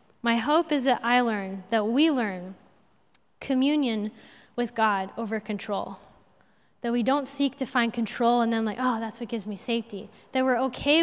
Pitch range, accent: 210-250 Hz, American